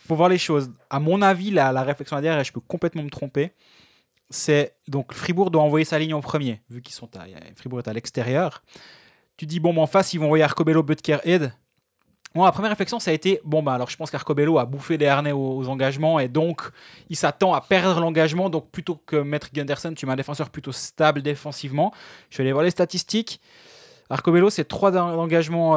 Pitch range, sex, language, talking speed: 135-165 Hz, male, French, 225 wpm